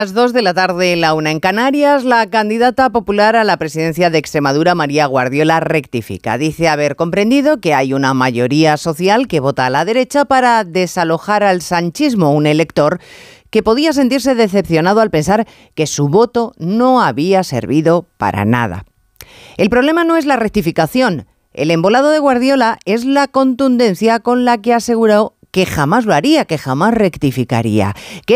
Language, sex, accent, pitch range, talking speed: Spanish, female, Spanish, 150-230 Hz, 165 wpm